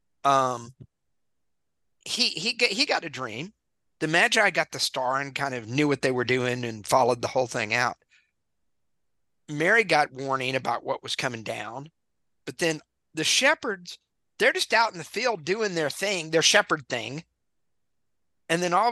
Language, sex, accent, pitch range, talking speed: English, male, American, 140-190 Hz, 170 wpm